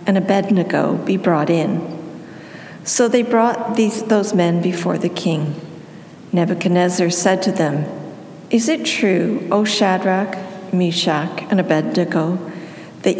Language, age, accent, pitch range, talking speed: English, 50-69, American, 175-220 Hz, 125 wpm